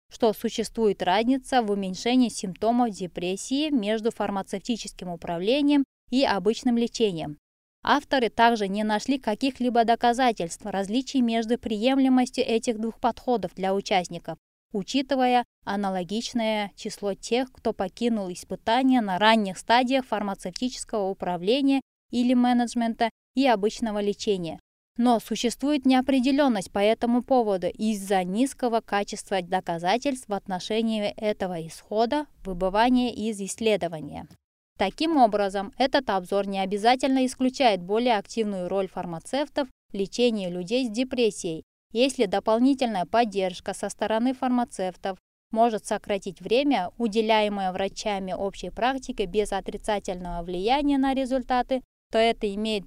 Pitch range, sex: 195-245 Hz, female